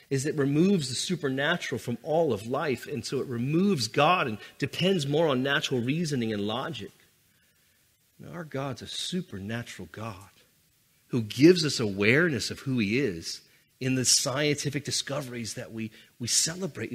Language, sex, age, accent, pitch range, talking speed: English, male, 40-59, American, 125-190 Hz, 150 wpm